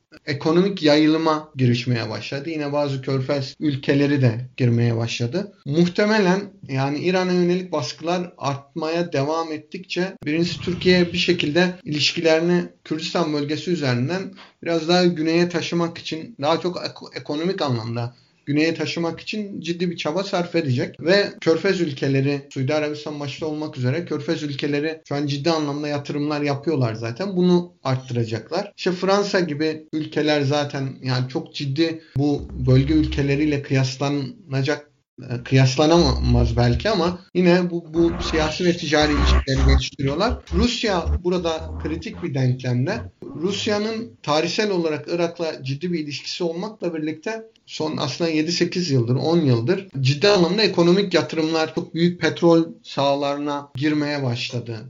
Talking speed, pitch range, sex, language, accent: 125 wpm, 135-170 Hz, male, Turkish, native